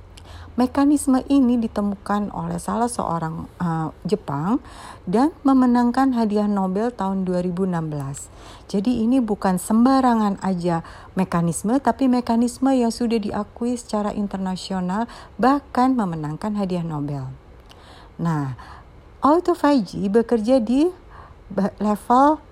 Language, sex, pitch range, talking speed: Indonesian, female, 175-245 Hz, 95 wpm